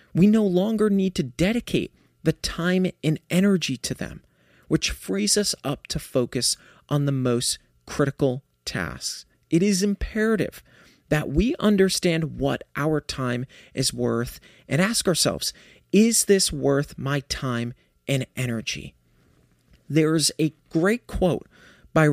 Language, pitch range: English, 130-175 Hz